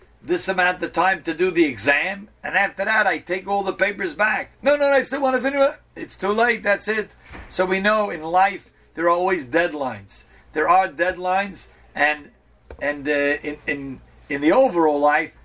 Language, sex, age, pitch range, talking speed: English, male, 50-69, 145-190 Hz, 200 wpm